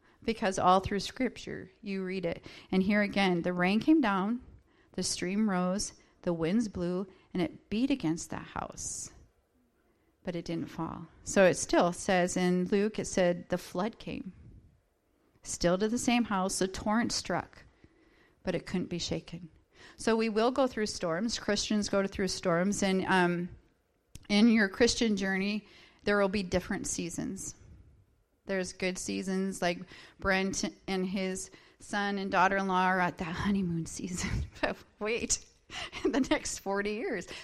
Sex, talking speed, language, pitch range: female, 155 wpm, English, 185-215 Hz